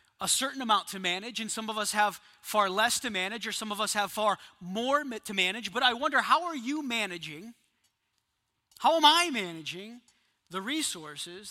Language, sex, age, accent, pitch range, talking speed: English, male, 40-59, American, 165-245 Hz, 190 wpm